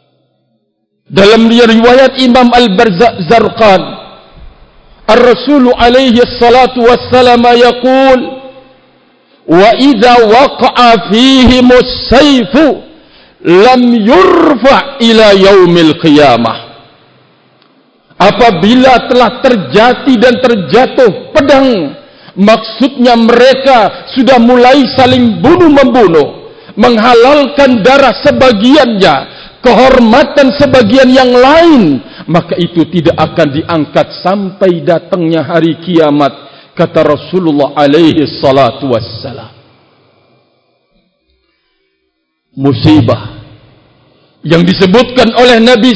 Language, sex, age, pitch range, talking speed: Indonesian, male, 50-69, 180-255 Hz, 65 wpm